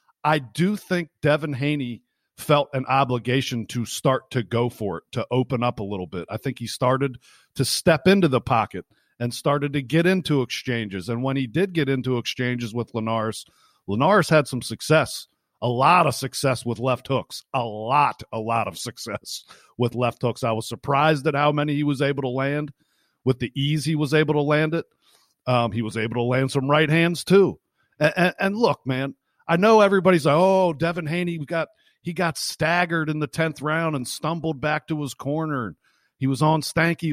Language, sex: English, male